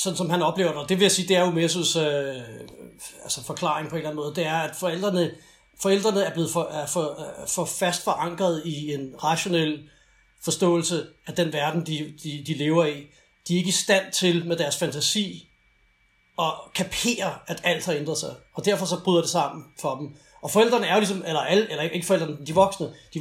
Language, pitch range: English, 150-180 Hz